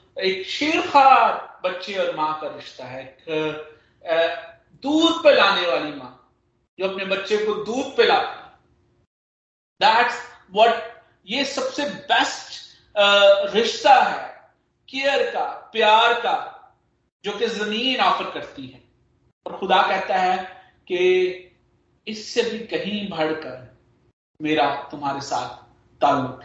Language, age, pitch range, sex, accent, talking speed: Hindi, 40-59, 145-210 Hz, male, native, 105 wpm